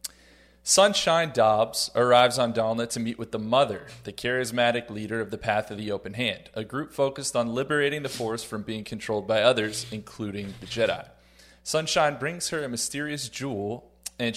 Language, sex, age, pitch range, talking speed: English, male, 30-49, 105-125 Hz, 175 wpm